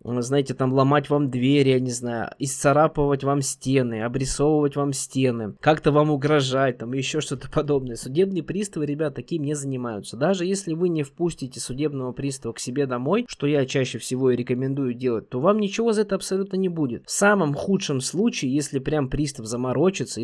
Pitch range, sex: 135-175 Hz, male